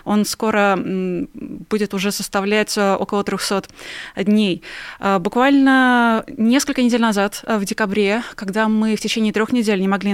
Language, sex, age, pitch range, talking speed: Russian, female, 20-39, 195-230 Hz, 130 wpm